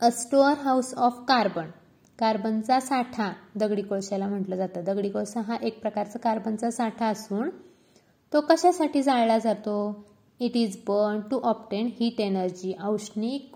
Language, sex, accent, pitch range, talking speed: Marathi, female, native, 205-240 Hz, 135 wpm